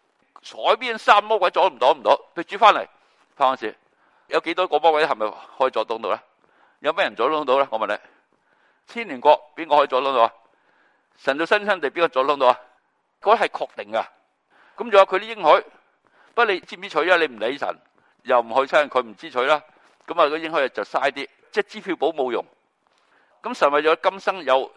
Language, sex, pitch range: Chinese, male, 150-215 Hz